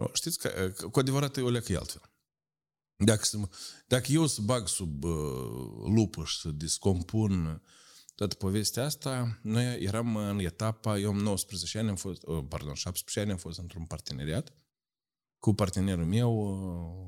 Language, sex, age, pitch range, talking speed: Romanian, male, 50-69, 85-120 Hz, 135 wpm